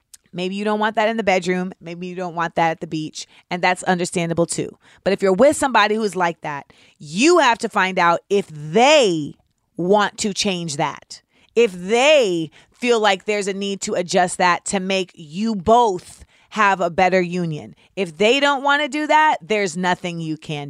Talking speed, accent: 195 wpm, American